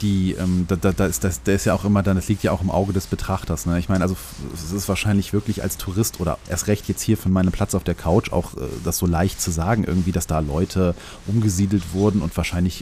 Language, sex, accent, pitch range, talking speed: German, male, German, 90-105 Hz, 265 wpm